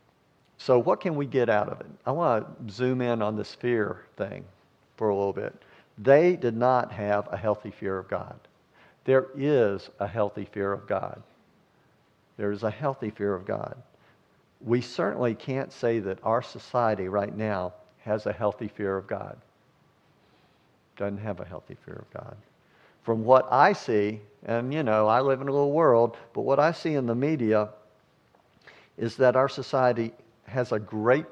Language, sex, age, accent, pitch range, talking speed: English, male, 50-69, American, 105-130 Hz, 180 wpm